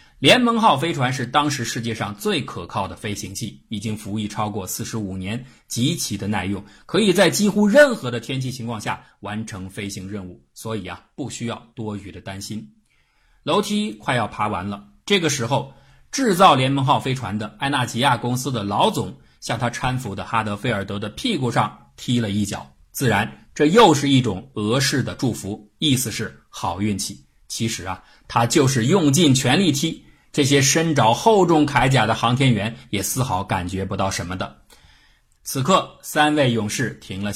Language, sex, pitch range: Chinese, male, 100-135 Hz